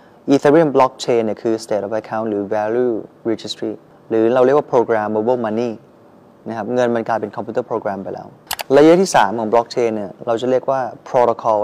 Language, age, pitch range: Thai, 20-39, 110-135 Hz